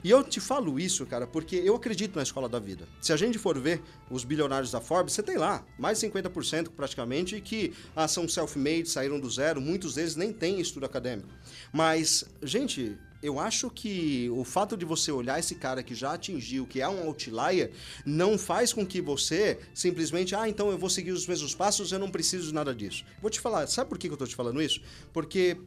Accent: Brazilian